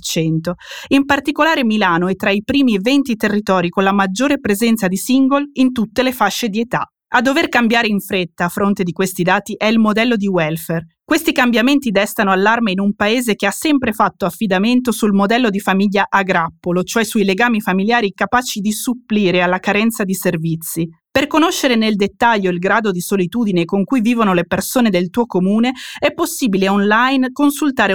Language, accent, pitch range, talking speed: Italian, native, 190-250 Hz, 180 wpm